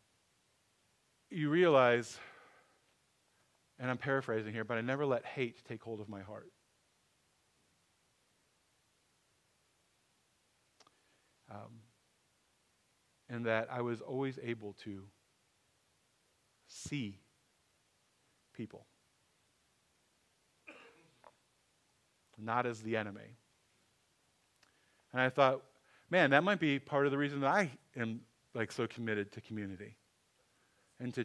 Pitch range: 110-140 Hz